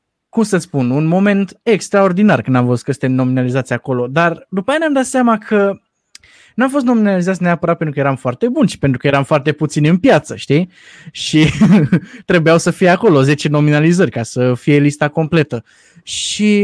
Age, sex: 20-39, male